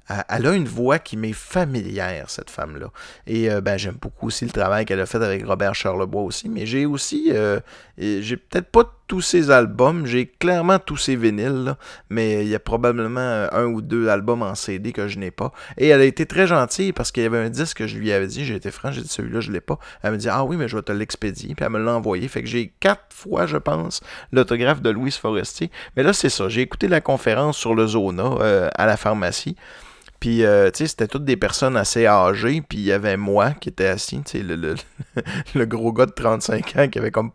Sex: male